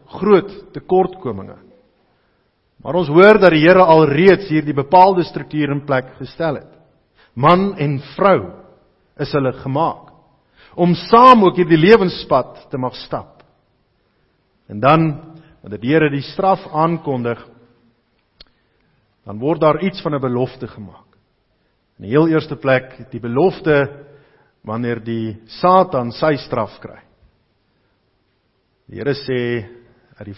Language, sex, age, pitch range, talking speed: English, male, 50-69, 120-165 Hz, 130 wpm